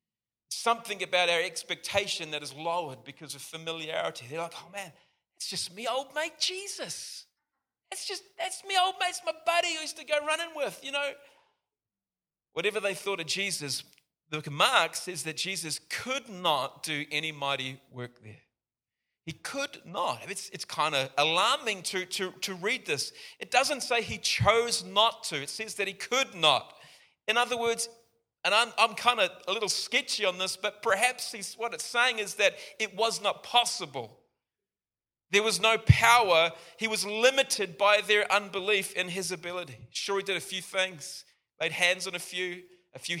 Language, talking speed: English, 185 wpm